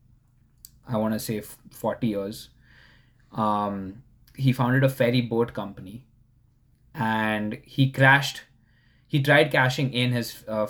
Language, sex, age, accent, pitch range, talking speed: English, male, 20-39, Indian, 110-130 Hz, 125 wpm